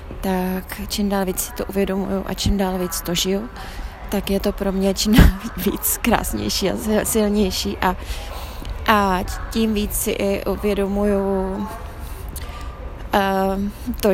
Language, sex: Czech, female